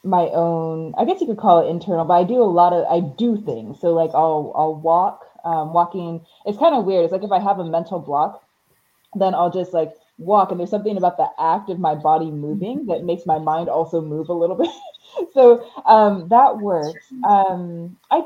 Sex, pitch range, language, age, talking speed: female, 165-215 Hz, English, 20-39, 220 wpm